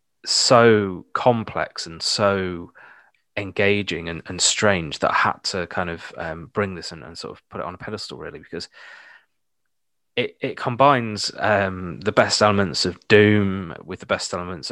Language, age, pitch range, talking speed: English, 20-39, 85-105 Hz, 165 wpm